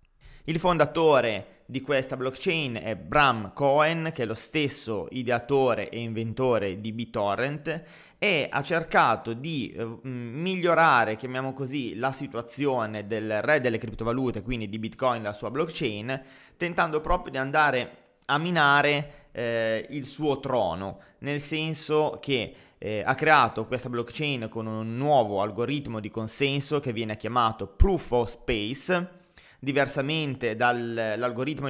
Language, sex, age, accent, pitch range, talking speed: Italian, male, 20-39, native, 115-145 Hz, 130 wpm